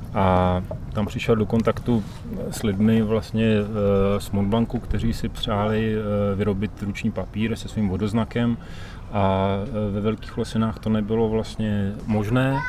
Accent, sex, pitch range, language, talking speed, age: native, male, 100-110 Hz, Czech, 140 wpm, 30-49